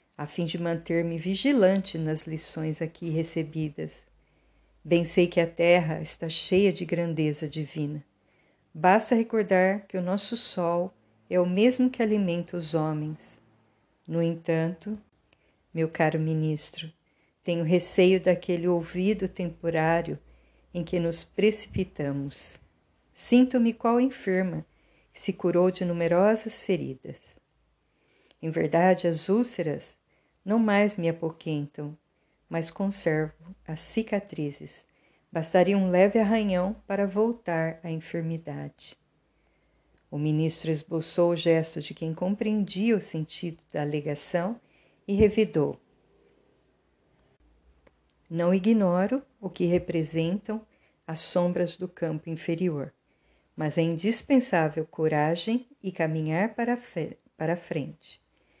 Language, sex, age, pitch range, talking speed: Portuguese, female, 50-69, 160-195 Hz, 110 wpm